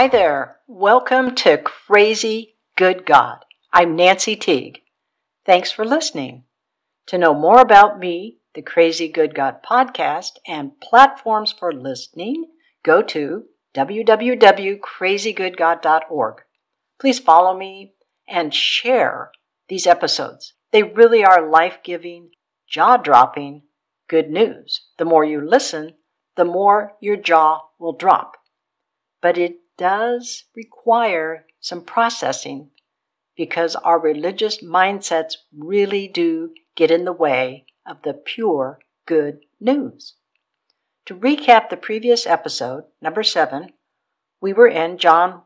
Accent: American